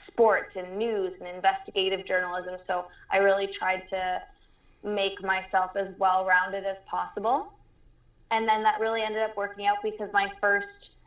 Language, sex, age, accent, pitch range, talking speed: English, female, 20-39, American, 180-205 Hz, 150 wpm